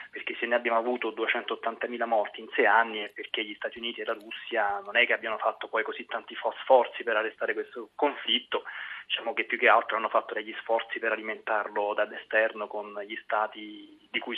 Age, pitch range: 20-39, 105-120 Hz